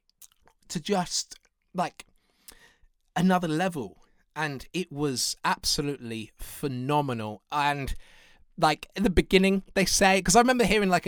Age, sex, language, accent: 20-39, male, English, British